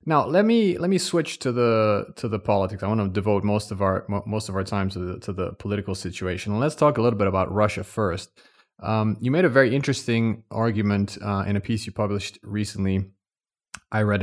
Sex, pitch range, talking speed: male, 95-115 Hz, 230 wpm